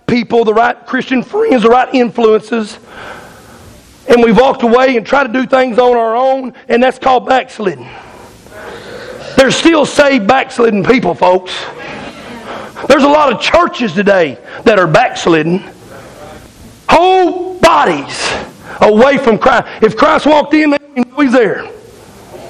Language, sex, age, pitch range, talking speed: English, male, 40-59, 220-270 Hz, 140 wpm